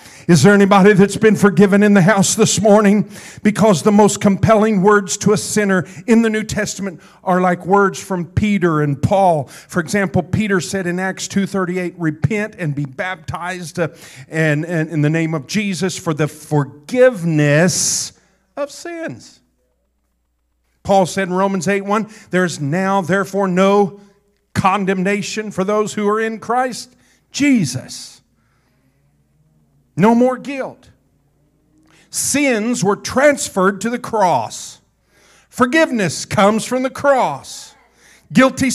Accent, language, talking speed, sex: American, English, 130 wpm, male